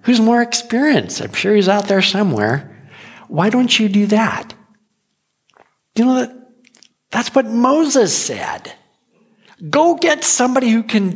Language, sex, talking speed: English, male, 140 wpm